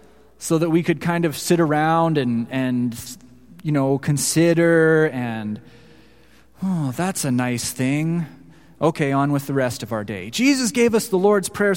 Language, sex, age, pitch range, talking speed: English, male, 30-49, 135-180 Hz, 170 wpm